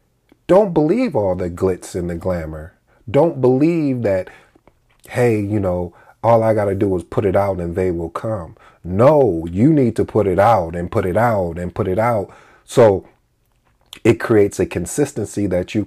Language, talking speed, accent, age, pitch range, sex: English, 185 wpm, American, 40-59, 90-110 Hz, male